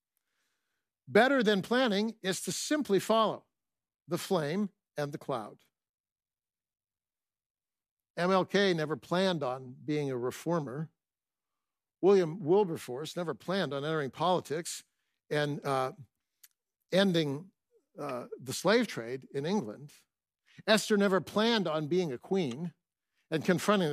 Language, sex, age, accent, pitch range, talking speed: English, male, 60-79, American, 155-205 Hz, 110 wpm